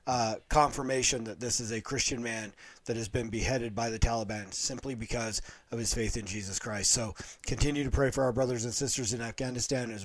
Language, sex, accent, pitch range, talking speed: English, male, American, 110-135 Hz, 210 wpm